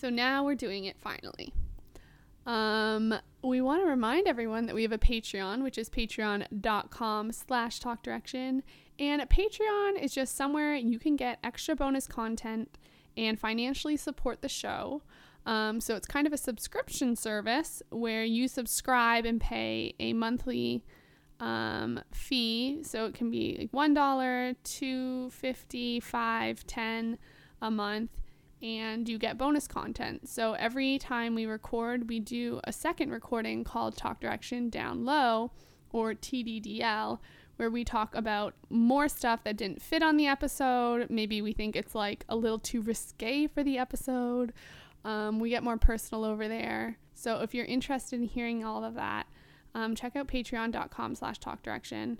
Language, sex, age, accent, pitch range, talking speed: English, female, 20-39, American, 220-260 Hz, 155 wpm